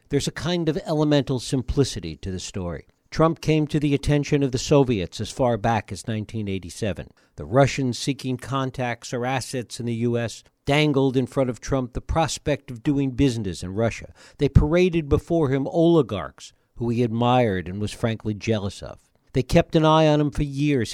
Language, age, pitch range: English, 60-79, 110-145 Hz